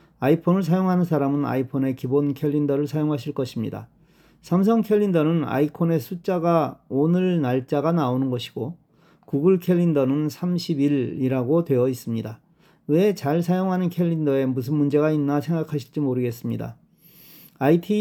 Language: Korean